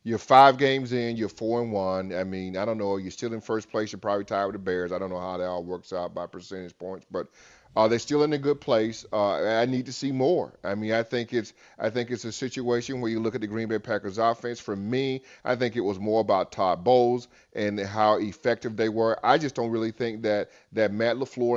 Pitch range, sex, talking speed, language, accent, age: 105-120 Hz, male, 255 wpm, English, American, 30-49